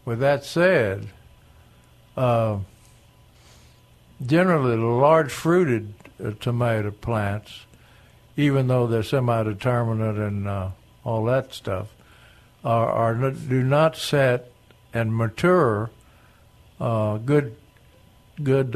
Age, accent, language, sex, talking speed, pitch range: 60-79, American, English, male, 95 wpm, 110-130 Hz